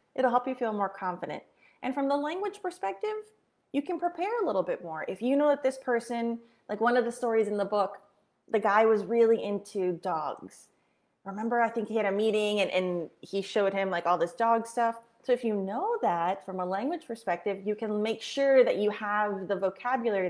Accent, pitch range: American, 195-275 Hz